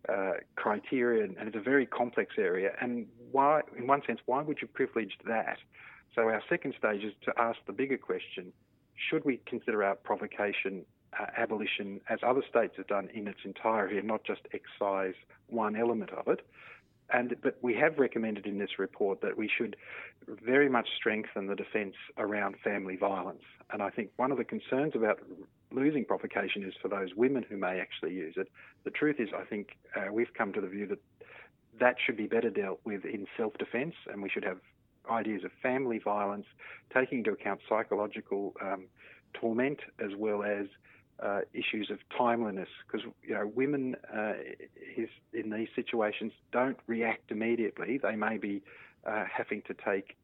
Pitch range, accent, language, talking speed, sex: 105-130 Hz, Australian, English, 175 wpm, male